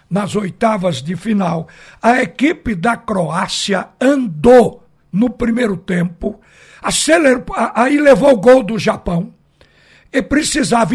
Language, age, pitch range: Portuguese, 60-79, 195-250 Hz